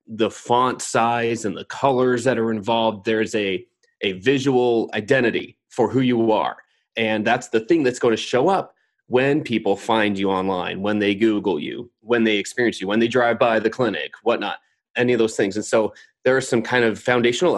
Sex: male